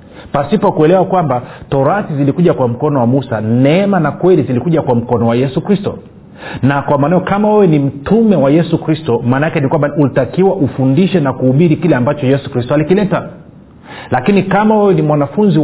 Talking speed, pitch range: 175 wpm, 135-180 Hz